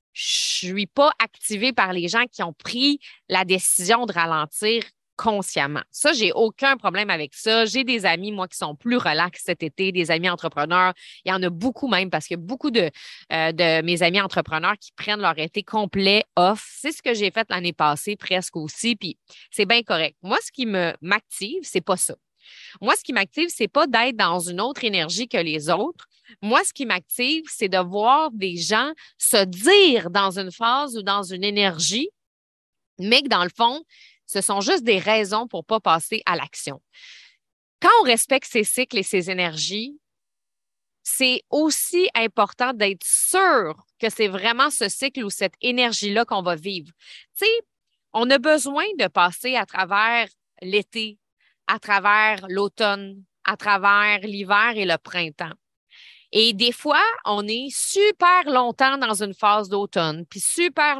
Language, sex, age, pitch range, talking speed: French, female, 20-39, 185-245 Hz, 180 wpm